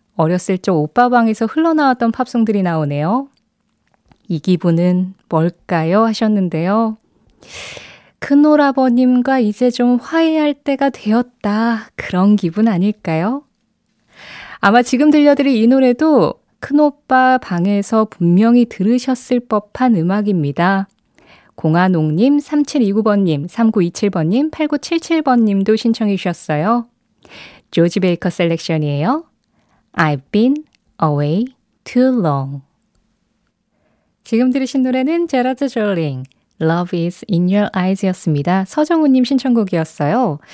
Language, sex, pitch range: Korean, female, 180-255 Hz